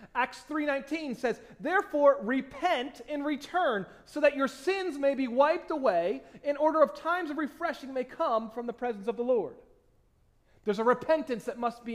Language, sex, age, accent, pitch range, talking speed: English, male, 30-49, American, 210-295 Hz, 175 wpm